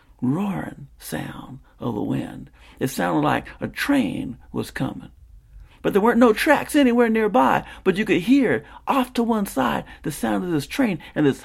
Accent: American